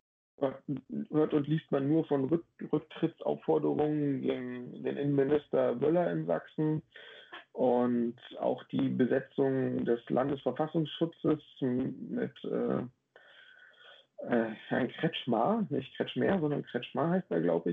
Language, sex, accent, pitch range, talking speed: German, male, German, 130-155 Hz, 110 wpm